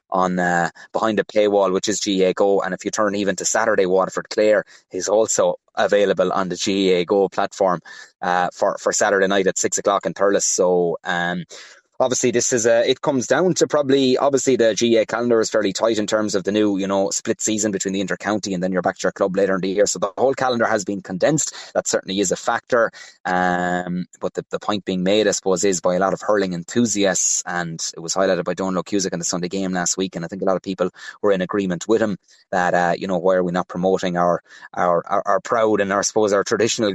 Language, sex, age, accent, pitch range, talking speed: English, male, 20-39, Irish, 90-105 Hz, 245 wpm